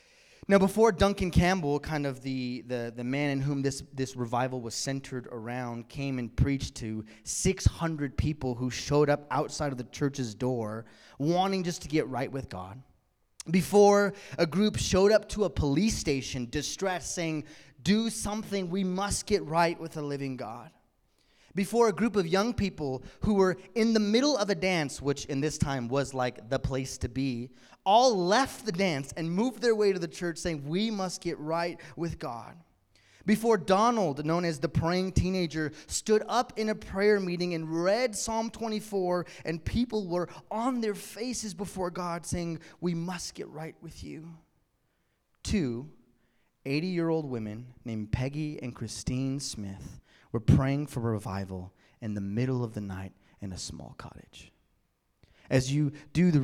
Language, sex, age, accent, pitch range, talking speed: English, male, 20-39, American, 125-185 Hz, 170 wpm